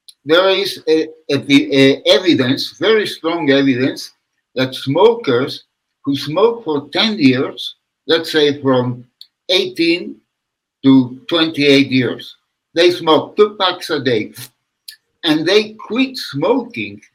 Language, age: English, 60-79